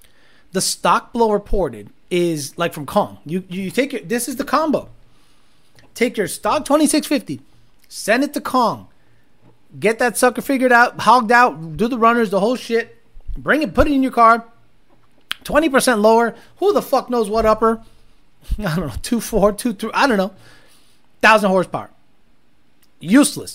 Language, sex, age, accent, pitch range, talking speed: English, male, 30-49, American, 180-250 Hz, 165 wpm